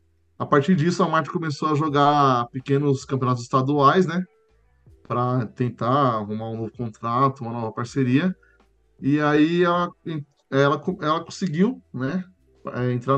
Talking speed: 130 wpm